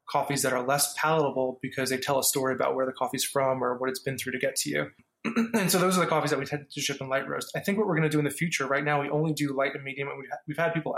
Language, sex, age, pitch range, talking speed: English, male, 20-39, 135-155 Hz, 330 wpm